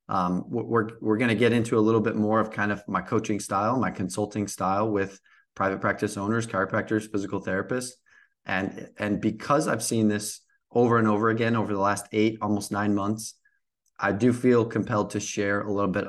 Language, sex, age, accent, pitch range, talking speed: English, male, 20-39, American, 100-115 Hz, 195 wpm